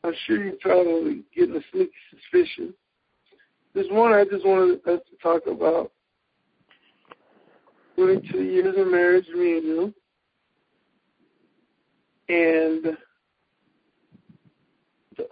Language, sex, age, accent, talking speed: English, male, 60-79, American, 100 wpm